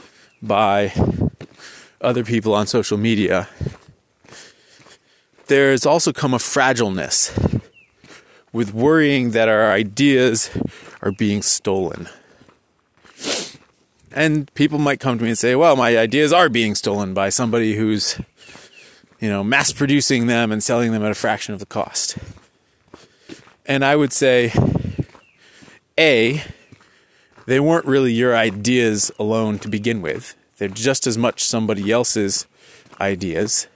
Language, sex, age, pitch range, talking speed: English, male, 30-49, 110-135 Hz, 125 wpm